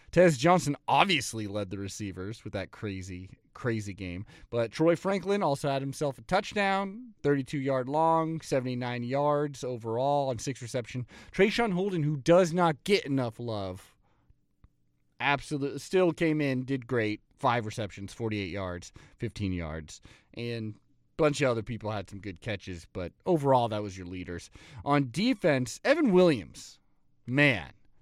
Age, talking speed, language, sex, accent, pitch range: 30-49, 150 wpm, English, male, American, 110-165 Hz